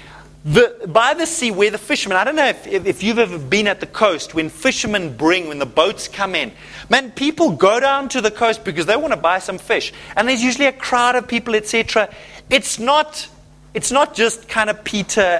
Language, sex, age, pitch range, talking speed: English, male, 30-49, 150-225 Hz, 220 wpm